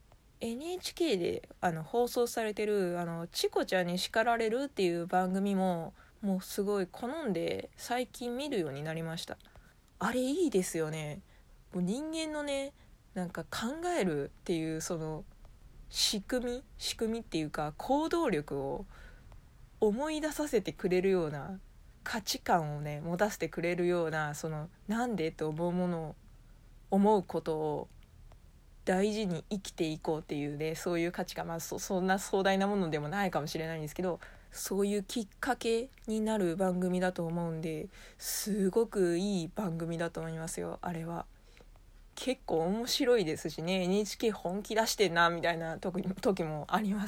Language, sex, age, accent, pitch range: Japanese, female, 20-39, native, 165-225 Hz